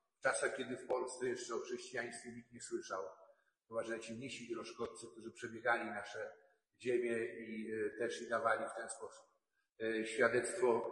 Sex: male